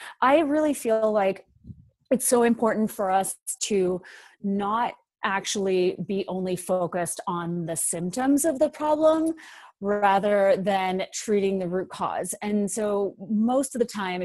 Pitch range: 180-220 Hz